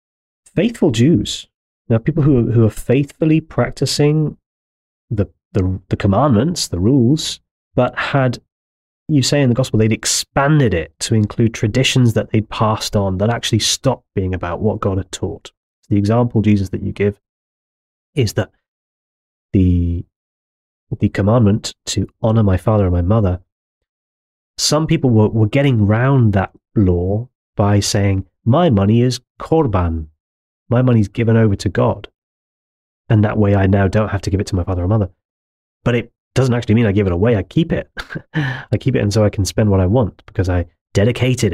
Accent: British